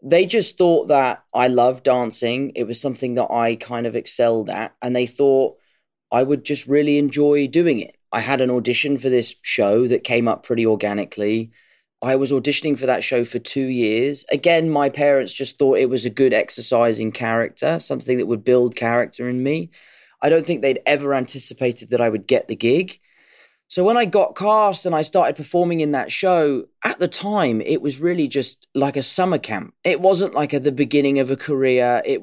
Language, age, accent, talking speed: English, 20-39, British, 205 wpm